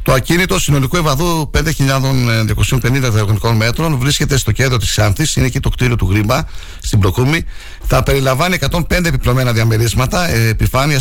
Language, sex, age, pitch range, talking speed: Greek, male, 60-79, 110-145 Hz, 140 wpm